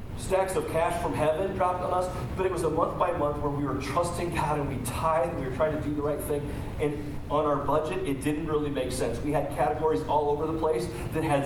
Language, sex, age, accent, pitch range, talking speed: English, male, 40-59, American, 140-180 Hz, 260 wpm